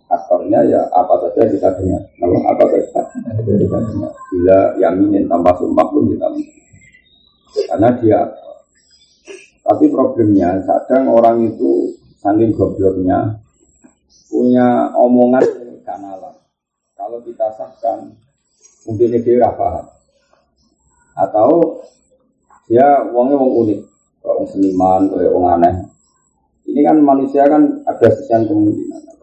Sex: male